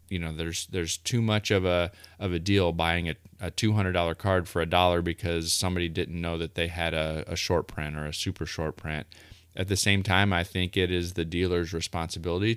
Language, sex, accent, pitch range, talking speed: English, male, American, 85-100 Hz, 230 wpm